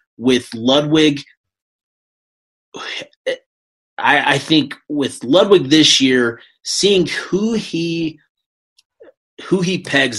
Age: 30-49